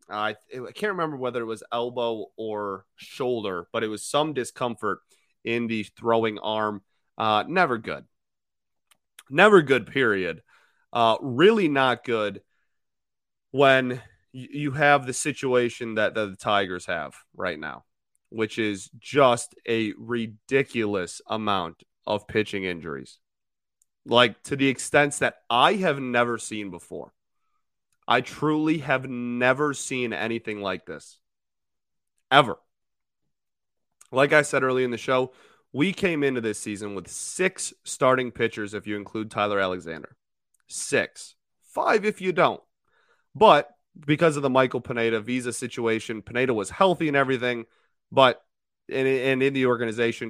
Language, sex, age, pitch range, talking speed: English, male, 30-49, 110-135 Hz, 135 wpm